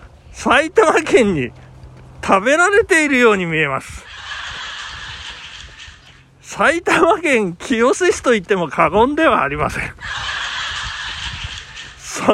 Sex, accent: male, native